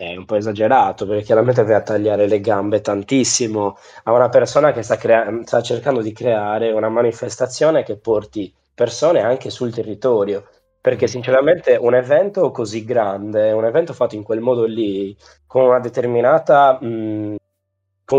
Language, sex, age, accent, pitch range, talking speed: Italian, male, 20-39, native, 110-160 Hz, 160 wpm